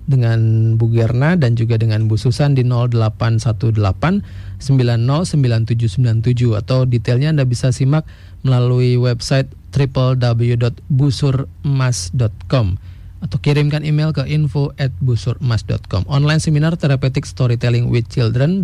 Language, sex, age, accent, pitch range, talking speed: Indonesian, male, 30-49, native, 115-135 Hz, 95 wpm